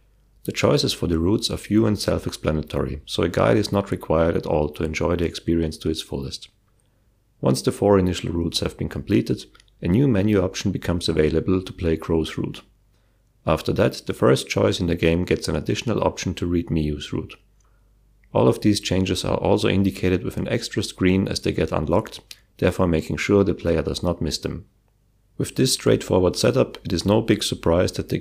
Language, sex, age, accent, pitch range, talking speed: English, male, 40-59, German, 85-105 Hz, 200 wpm